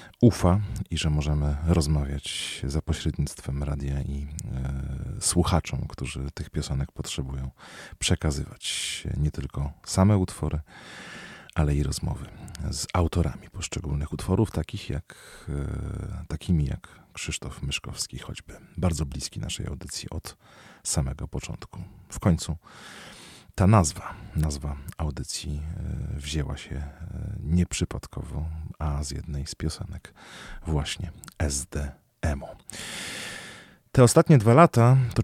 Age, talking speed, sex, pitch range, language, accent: 40-59, 100 wpm, male, 75-95 Hz, Polish, native